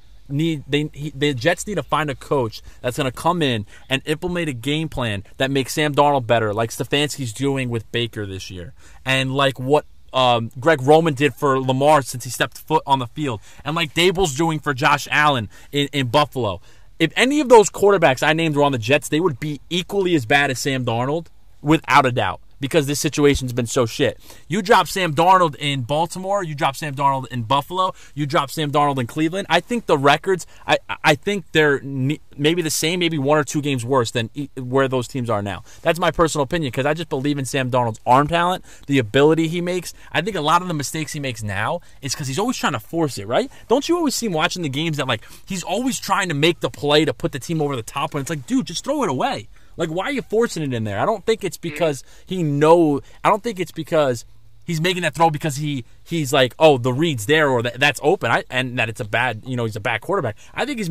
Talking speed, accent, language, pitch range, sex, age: 240 wpm, American, English, 130-165 Hz, male, 30-49